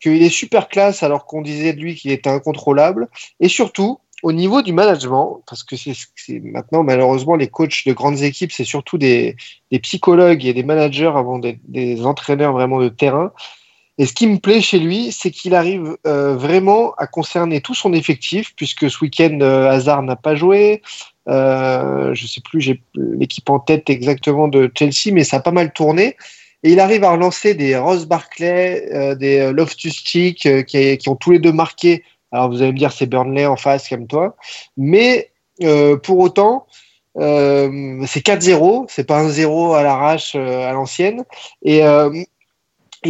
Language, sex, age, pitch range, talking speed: French, male, 30-49, 140-175 Hz, 190 wpm